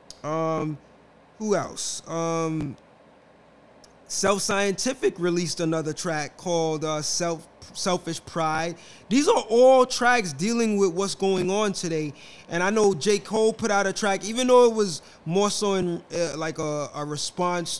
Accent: American